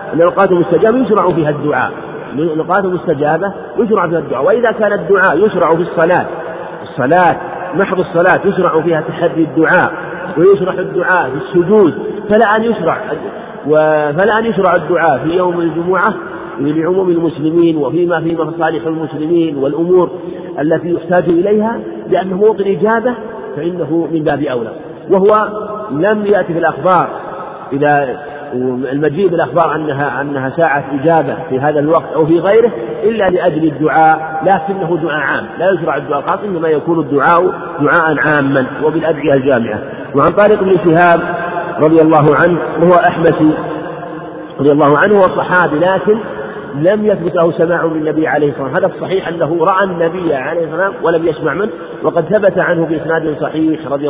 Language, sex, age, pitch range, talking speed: Arabic, male, 50-69, 155-185 Hz, 140 wpm